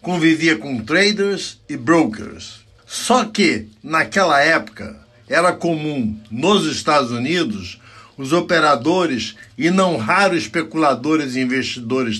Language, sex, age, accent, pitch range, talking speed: Portuguese, male, 60-79, Brazilian, 120-175 Hz, 110 wpm